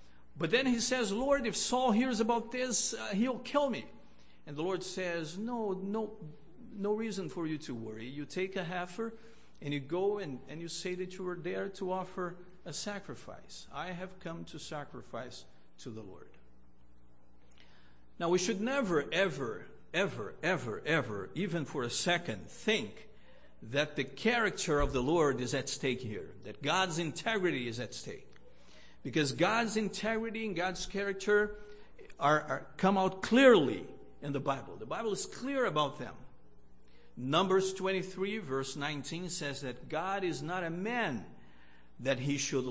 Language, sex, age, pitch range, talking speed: English, male, 50-69, 120-200 Hz, 165 wpm